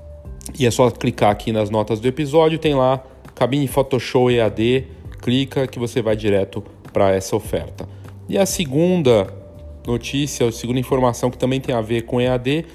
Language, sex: Portuguese, male